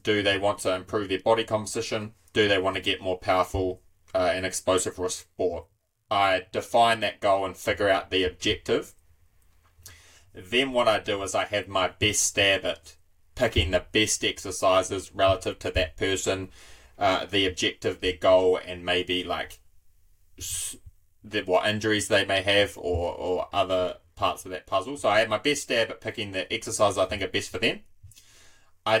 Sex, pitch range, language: male, 90-105 Hz, English